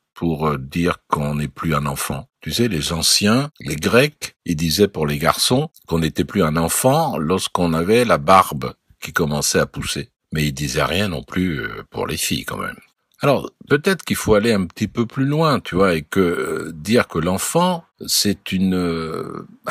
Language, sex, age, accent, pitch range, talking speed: French, male, 60-79, French, 85-115 Hz, 190 wpm